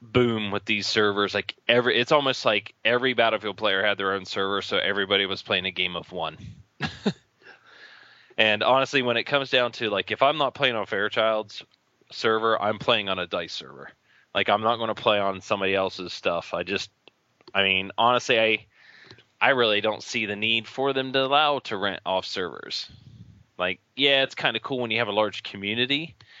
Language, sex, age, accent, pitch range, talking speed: English, male, 20-39, American, 100-120 Hz, 200 wpm